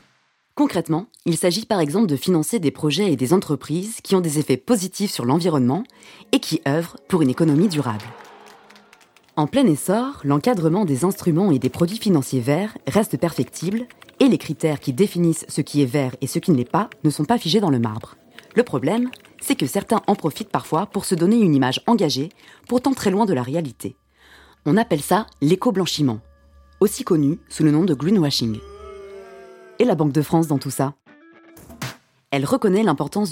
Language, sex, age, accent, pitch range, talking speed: French, female, 20-39, French, 140-200 Hz, 185 wpm